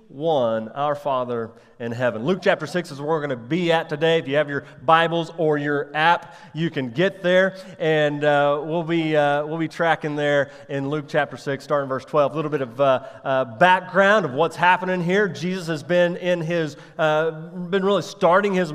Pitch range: 150-190 Hz